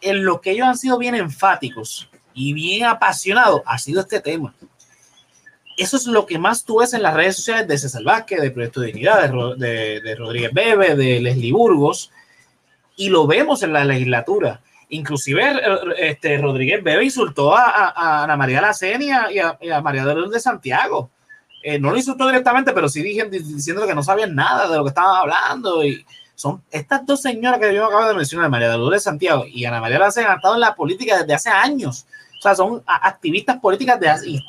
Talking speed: 205 wpm